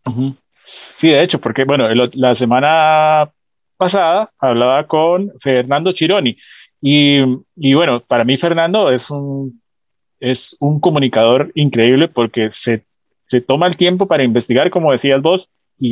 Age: 30-49